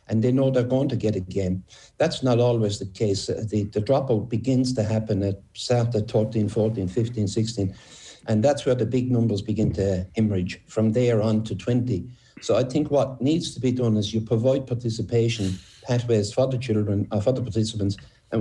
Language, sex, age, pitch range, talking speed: English, male, 60-79, 105-125 Hz, 195 wpm